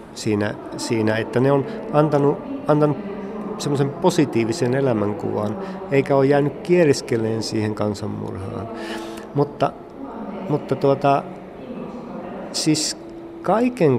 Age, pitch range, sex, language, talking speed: 50-69, 115-175 Hz, male, Finnish, 90 wpm